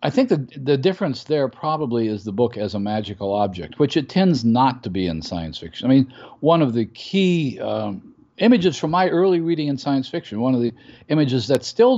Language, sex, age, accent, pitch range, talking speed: English, male, 50-69, American, 105-140 Hz, 220 wpm